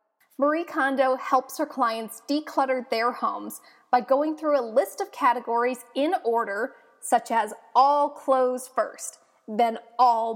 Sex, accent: female, American